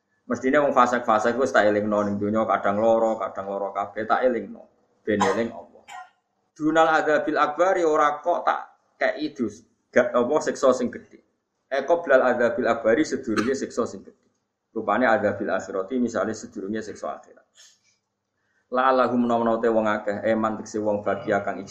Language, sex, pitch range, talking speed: Indonesian, male, 110-145 Hz, 55 wpm